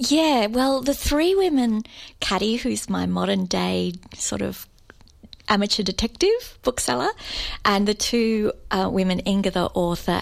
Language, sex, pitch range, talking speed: English, female, 180-230 Hz, 130 wpm